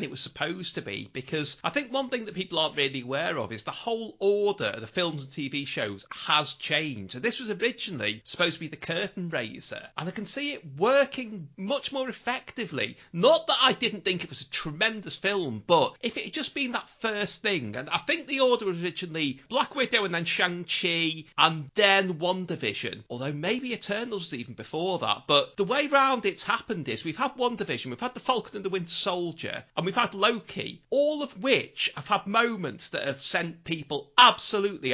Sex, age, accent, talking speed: male, 30-49, British, 210 wpm